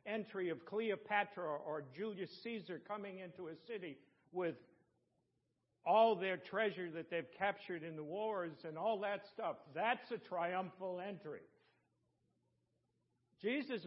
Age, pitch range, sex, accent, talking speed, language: 60-79, 160-210 Hz, male, American, 125 wpm, English